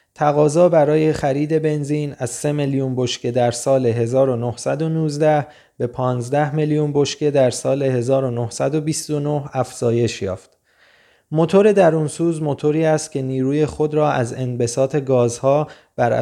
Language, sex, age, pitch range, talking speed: Persian, male, 20-39, 125-155 Hz, 120 wpm